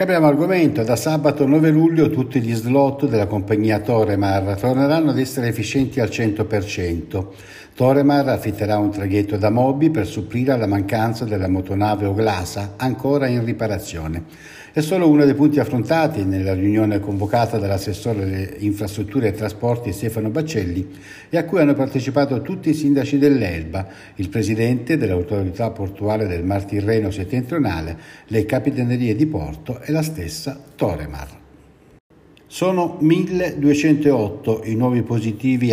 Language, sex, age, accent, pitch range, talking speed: Italian, male, 60-79, native, 100-140 Hz, 135 wpm